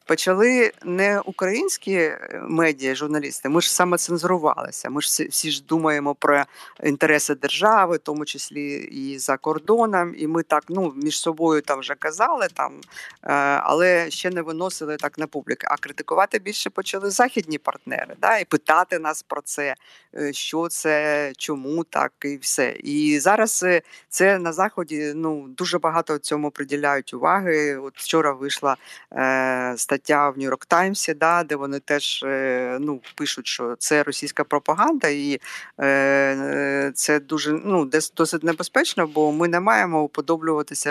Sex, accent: female, native